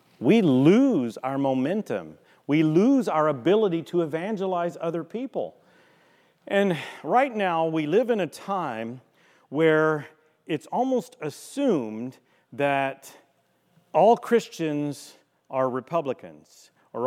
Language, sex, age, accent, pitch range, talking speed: English, male, 40-59, American, 125-170 Hz, 105 wpm